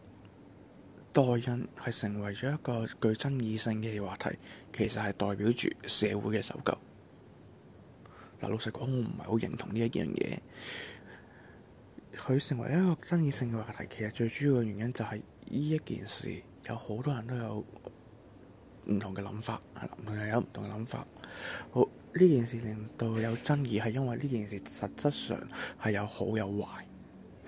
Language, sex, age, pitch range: English, male, 20-39, 105-130 Hz